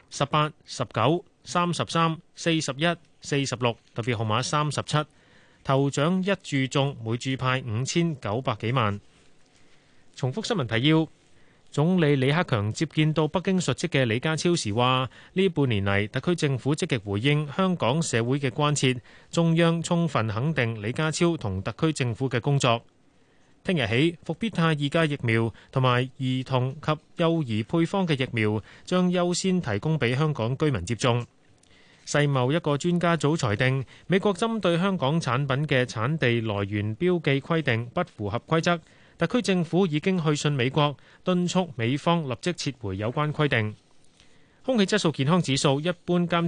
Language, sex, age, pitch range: Chinese, male, 30-49, 120-165 Hz